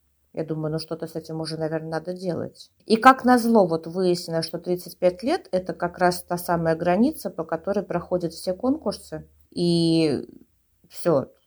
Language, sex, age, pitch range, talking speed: Russian, female, 30-49, 160-235 Hz, 165 wpm